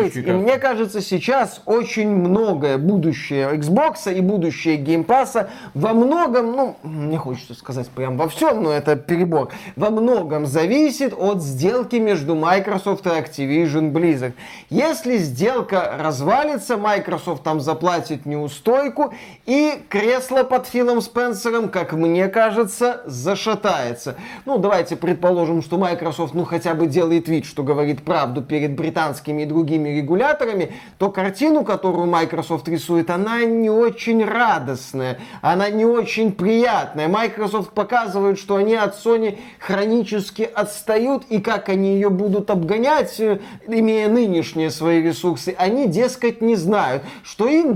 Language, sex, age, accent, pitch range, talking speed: Russian, male, 20-39, native, 165-225 Hz, 130 wpm